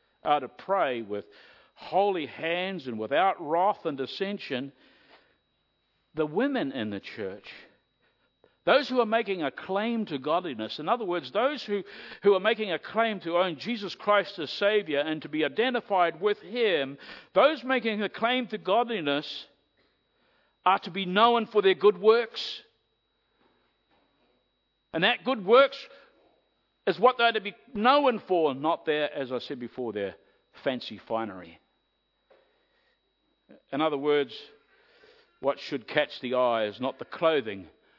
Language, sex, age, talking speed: English, male, 60-79, 145 wpm